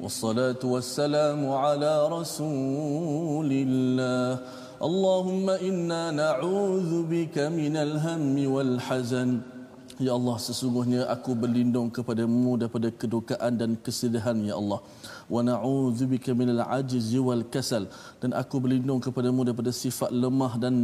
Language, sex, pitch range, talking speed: Malayalam, male, 115-130 Hz, 120 wpm